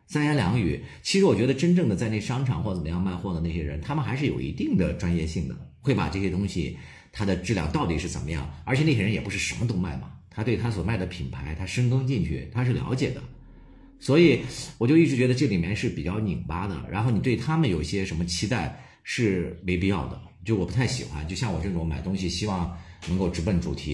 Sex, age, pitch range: male, 50-69, 85-125 Hz